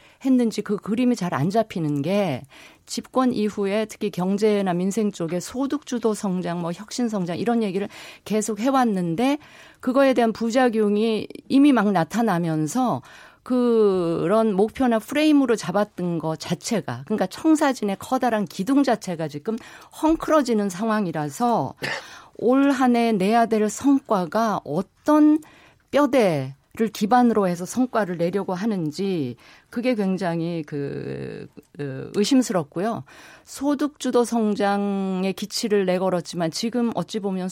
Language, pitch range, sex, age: Korean, 180-240 Hz, female, 50-69